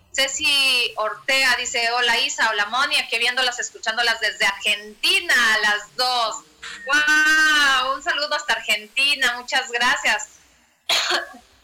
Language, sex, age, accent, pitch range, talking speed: Spanish, female, 30-49, Mexican, 230-300 Hz, 110 wpm